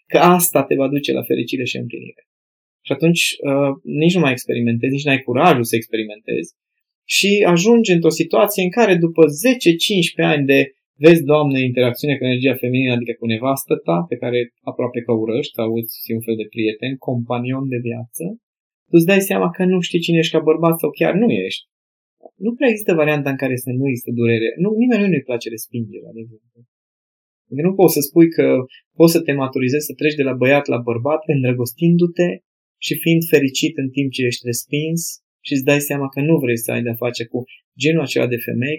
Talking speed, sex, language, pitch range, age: 200 wpm, male, Romanian, 125-165 Hz, 20-39